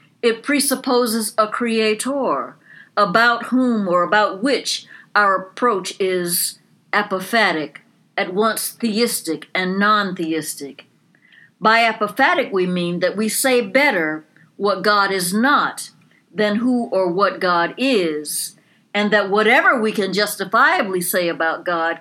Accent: American